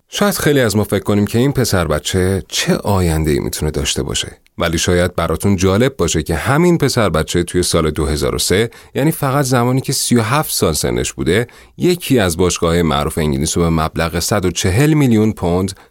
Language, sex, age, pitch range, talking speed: Persian, male, 30-49, 80-120 Hz, 170 wpm